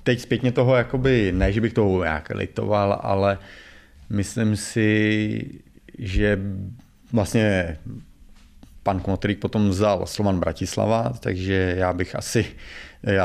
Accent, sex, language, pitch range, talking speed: native, male, Czech, 95-105 Hz, 115 wpm